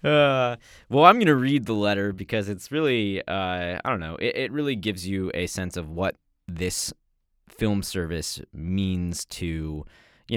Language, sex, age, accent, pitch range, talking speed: English, male, 20-39, American, 85-105 Hz, 175 wpm